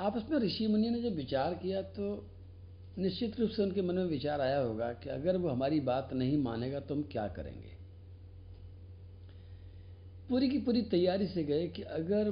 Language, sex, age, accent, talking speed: Hindi, male, 60-79, native, 180 wpm